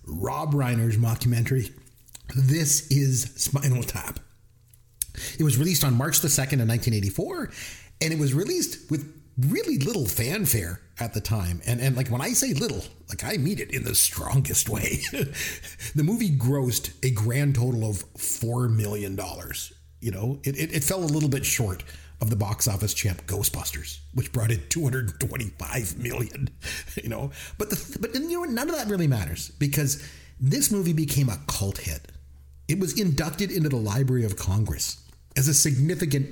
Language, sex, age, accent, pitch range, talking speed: English, male, 40-59, American, 105-145 Hz, 170 wpm